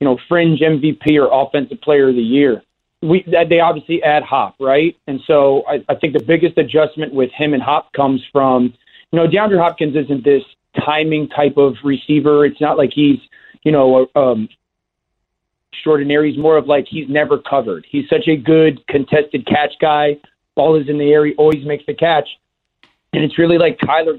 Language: English